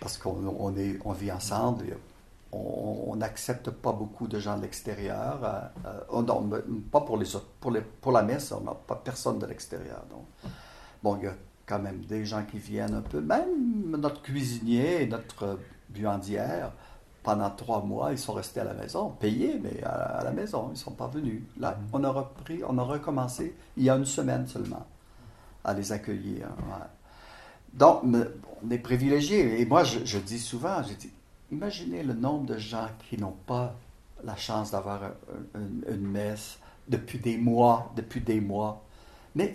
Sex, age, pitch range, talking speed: male, 60-79, 105-125 Hz, 185 wpm